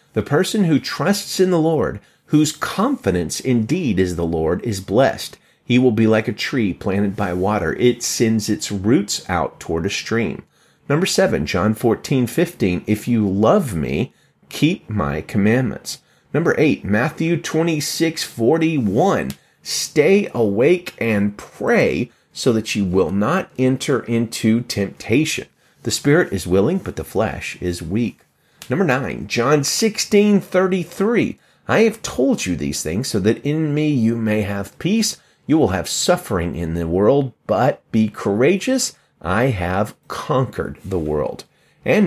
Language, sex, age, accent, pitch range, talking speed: English, male, 40-59, American, 95-150 Hz, 150 wpm